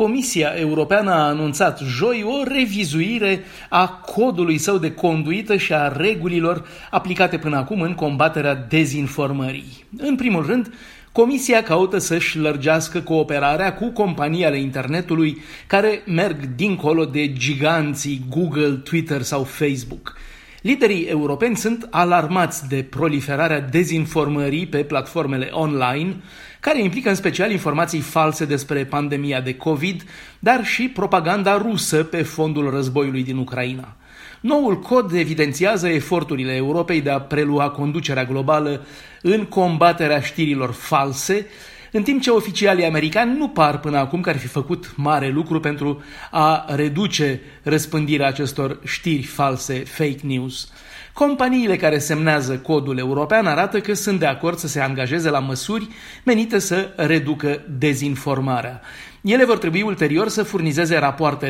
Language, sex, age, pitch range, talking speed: Romanian, male, 30-49, 145-190 Hz, 130 wpm